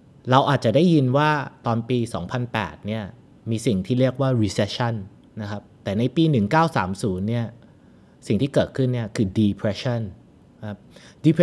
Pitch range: 110-140 Hz